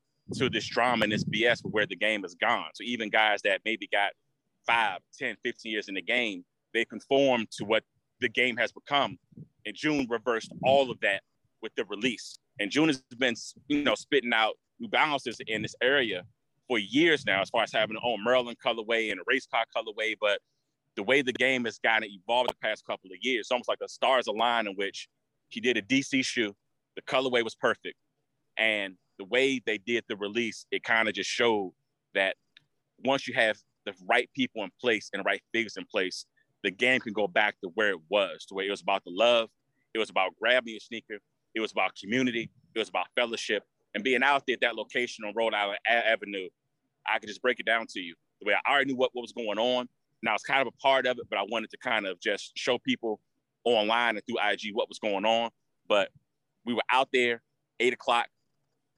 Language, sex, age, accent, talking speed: English, male, 30-49, American, 230 wpm